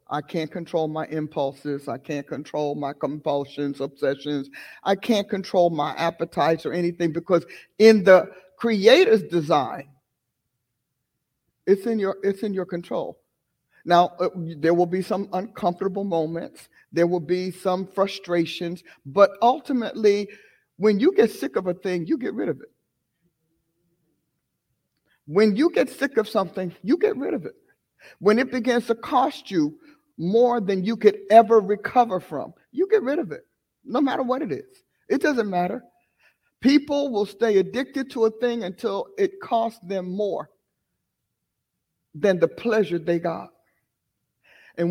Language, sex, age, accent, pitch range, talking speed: English, male, 50-69, American, 170-235 Hz, 145 wpm